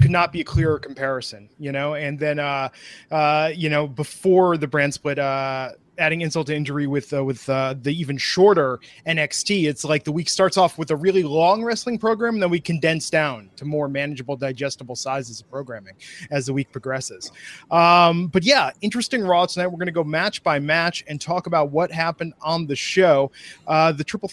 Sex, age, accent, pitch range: male, 20-39, American, 145-180 Hz